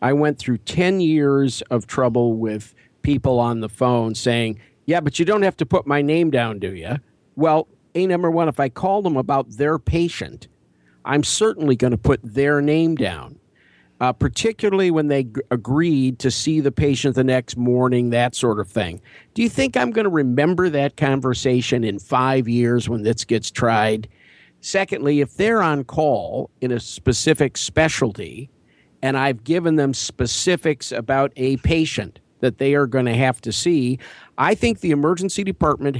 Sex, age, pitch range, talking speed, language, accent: male, 50-69, 120-155 Hz, 180 wpm, English, American